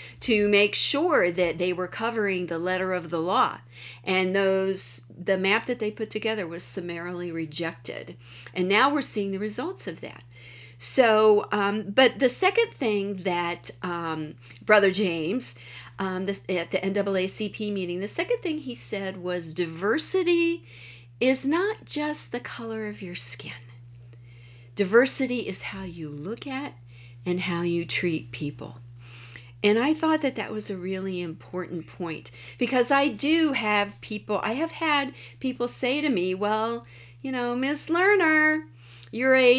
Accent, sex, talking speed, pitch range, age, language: American, female, 150 wpm, 155-230 Hz, 50-69, English